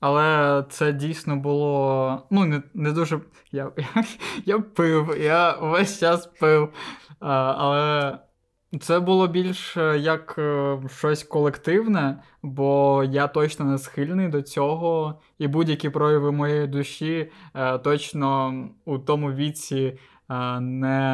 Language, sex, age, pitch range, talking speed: Ukrainian, male, 20-39, 135-165 Hz, 115 wpm